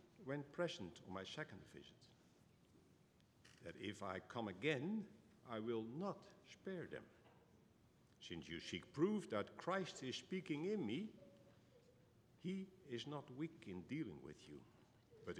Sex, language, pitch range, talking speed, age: male, English, 110-175 Hz, 135 wpm, 60-79